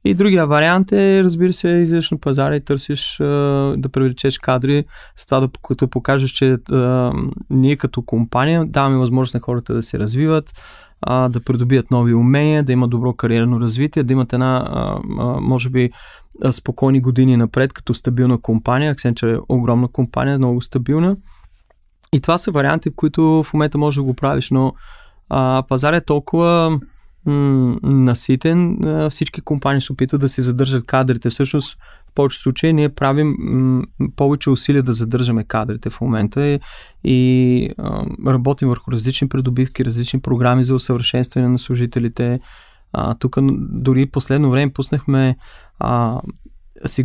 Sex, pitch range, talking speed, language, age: male, 125-150 Hz, 145 wpm, Bulgarian, 20-39